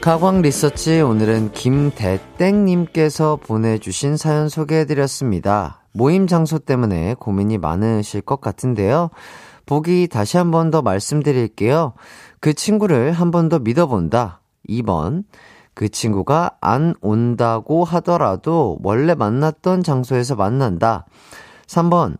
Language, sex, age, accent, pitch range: Korean, male, 30-49, native, 110-160 Hz